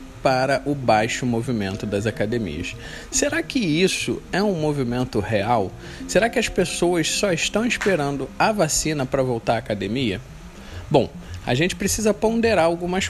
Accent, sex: Brazilian, male